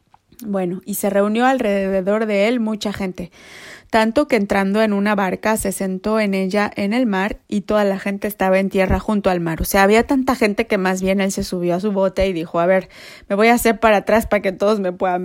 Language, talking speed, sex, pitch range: Spanish, 240 wpm, female, 195-220 Hz